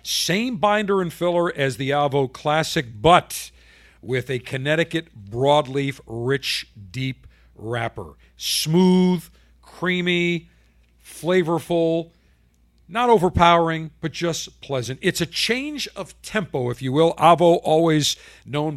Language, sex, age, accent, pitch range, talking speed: English, male, 50-69, American, 120-165 Hz, 110 wpm